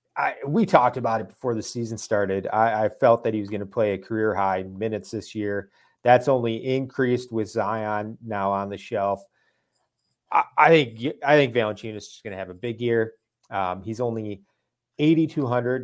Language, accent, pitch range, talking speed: English, American, 105-125 Hz, 190 wpm